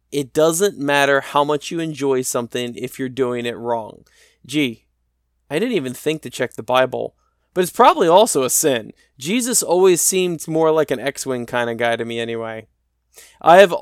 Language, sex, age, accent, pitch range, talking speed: English, male, 20-39, American, 120-155 Hz, 185 wpm